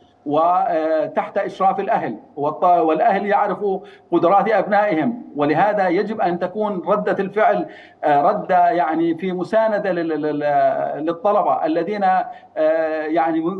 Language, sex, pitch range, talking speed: Arabic, male, 175-220 Hz, 90 wpm